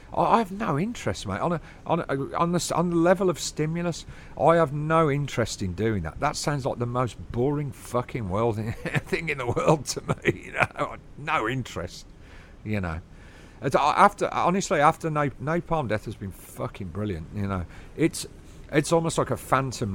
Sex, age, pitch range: male, 50-69, 95-135 Hz